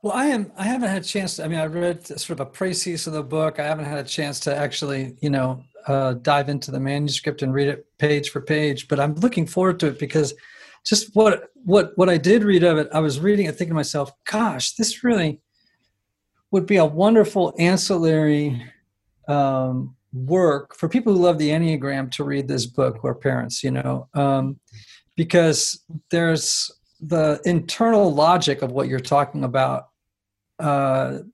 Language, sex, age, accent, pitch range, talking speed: English, male, 40-59, American, 140-185 Hz, 190 wpm